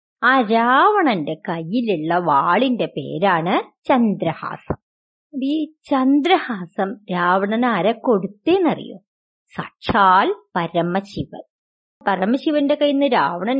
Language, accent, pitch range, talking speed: Malayalam, native, 195-290 Hz, 65 wpm